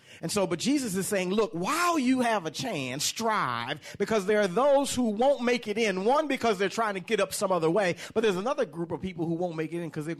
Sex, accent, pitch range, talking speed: male, American, 140-200 Hz, 265 wpm